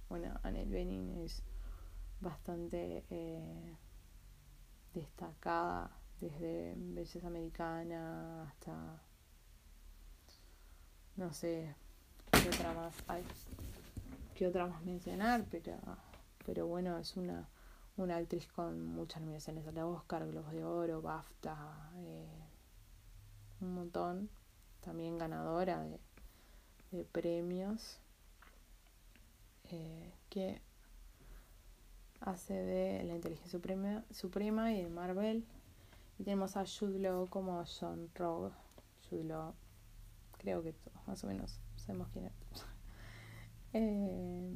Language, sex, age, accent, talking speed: Spanish, female, 20-39, Argentinian, 100 wpm